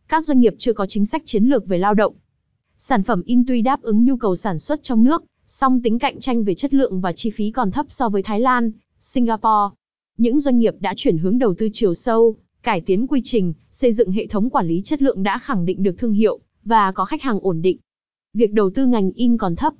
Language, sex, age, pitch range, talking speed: Vietnamese, female, 20-39, 195-245 Hz, 250 wpm